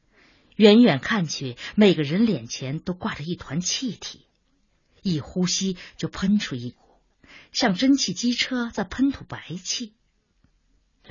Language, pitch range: Chinese, 150-225 Hz